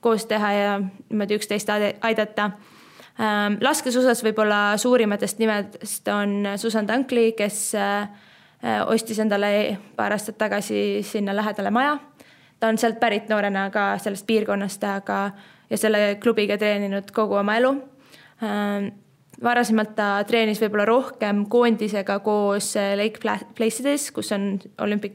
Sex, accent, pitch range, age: female, Finnish, 200-220 Hz, 20-39